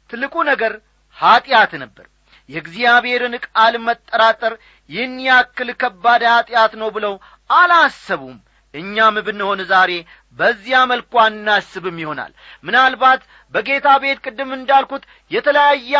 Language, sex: Amharic, male